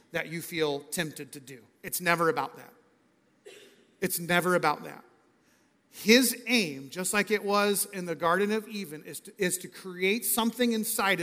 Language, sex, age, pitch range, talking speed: English, male, 40-59, 175-220 Hz, 165 wpm